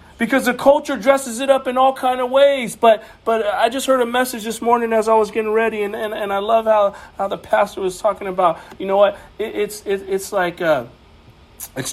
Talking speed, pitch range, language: 235 wpm, 175-225 Hz, English